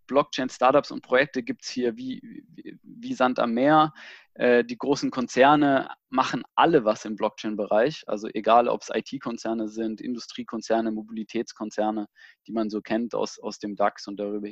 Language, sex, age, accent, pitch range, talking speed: German, male, 20-39, German, 110-125 Hz, 160 wpm